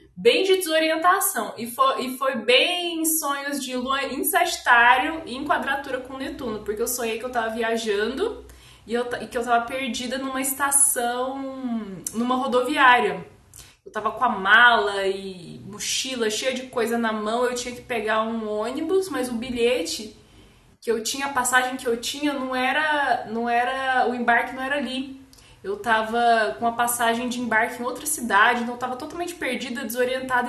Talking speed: 175 wpm